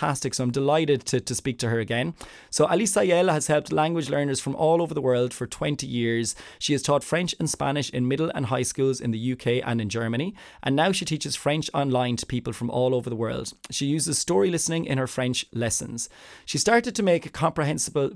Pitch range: 125-150 Hz